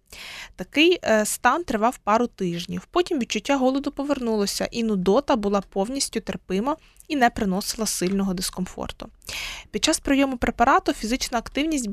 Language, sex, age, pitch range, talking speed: Ukrainian, female, 20-39, 205-250 Hz, 125 wpm